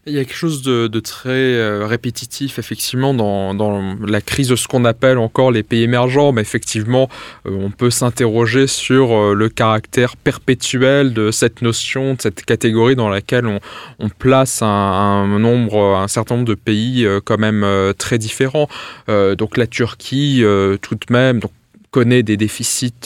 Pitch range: 105-125 Hz